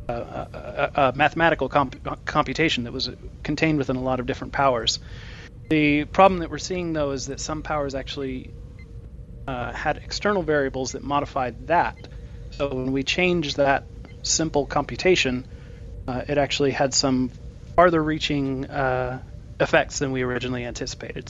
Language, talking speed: English, 140 wpm